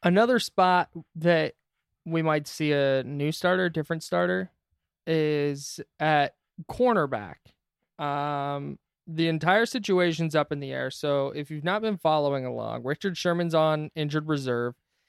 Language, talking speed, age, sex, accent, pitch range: English, 140 wpm, 20-39, male, American, 135-170 Hz